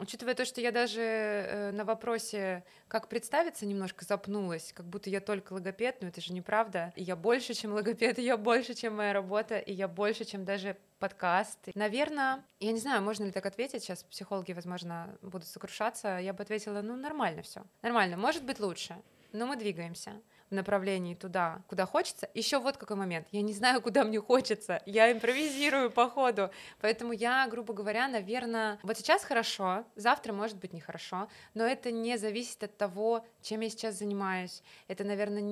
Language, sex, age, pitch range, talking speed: Russian, female, 20-39, 195-235 Hz, 175 wpm